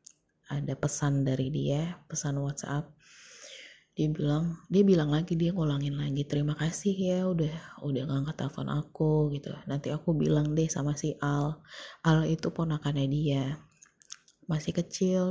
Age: 20-39